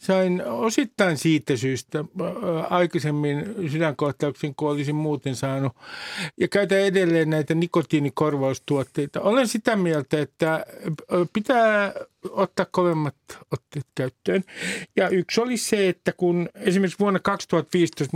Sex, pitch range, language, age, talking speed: male, 150-195 Hz, Finnish, 50-69, 110 wpm